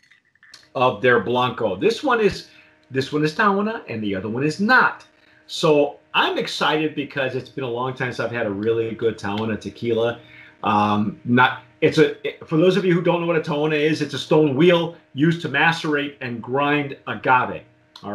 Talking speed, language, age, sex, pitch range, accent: 195 wpm, English, 40-59, male, 120-155 Hz, American